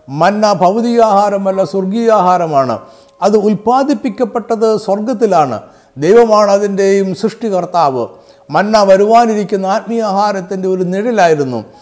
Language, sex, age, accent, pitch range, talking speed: Malayalam, male, 50-69, native, 175-225 Hz, 70 wpm